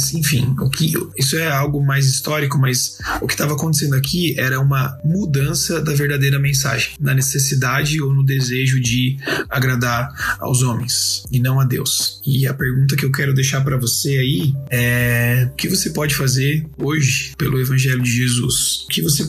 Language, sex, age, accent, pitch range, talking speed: Portuguese, male, 20-39, Brazilian, 130-140 Hz, 170 wpm